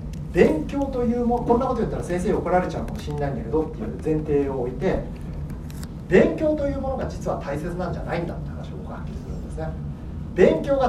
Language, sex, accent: Japanese, male, native